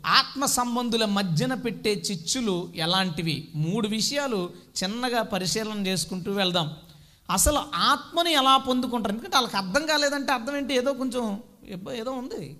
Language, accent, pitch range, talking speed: Telugu, native, 180-265 Hz, 130 wpm